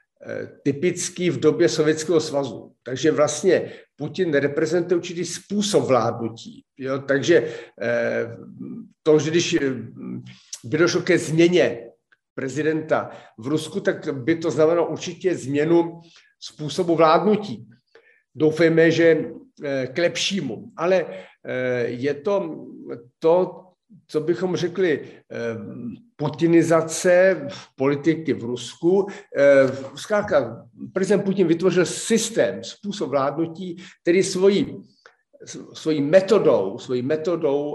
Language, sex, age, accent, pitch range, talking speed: Czech, male, 50-69, native, 145-180 Hz, 95 wpm